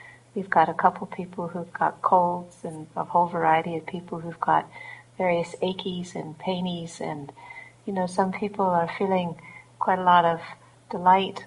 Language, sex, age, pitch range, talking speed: English, female, 40-59, 170-215 Hz, 165 wpm